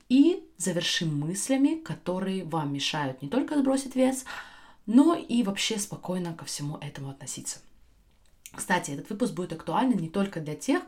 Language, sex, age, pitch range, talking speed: Russian, female, 20-39, 170-245 Hz, 150 wpm